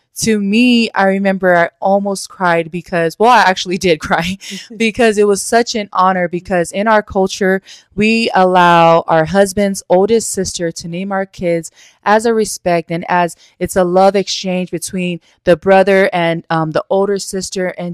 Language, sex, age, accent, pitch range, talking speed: English, female, 20-39, American, 165-200 Hz, 170 wpm